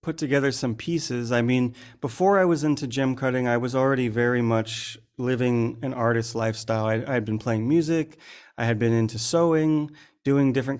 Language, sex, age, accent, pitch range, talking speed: English, male, 30-49, American, 115-135 Hz, 190 wpm